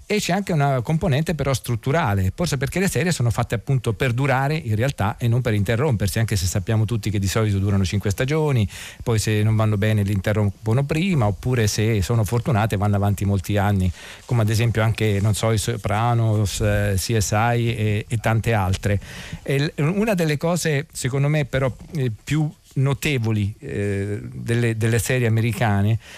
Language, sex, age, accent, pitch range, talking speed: Italian, male, 40-59, native, 105-135 Hz, 175 wpm